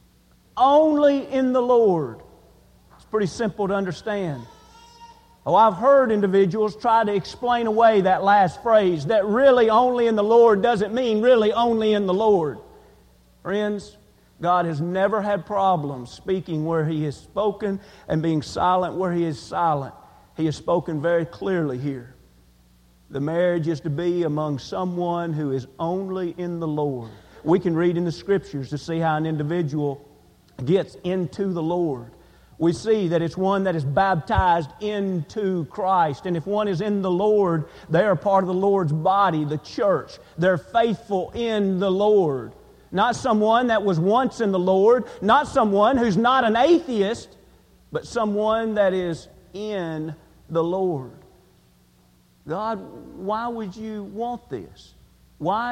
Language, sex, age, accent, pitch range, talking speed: English, male, 40-59, American, 160-215 Hz, 155 wpm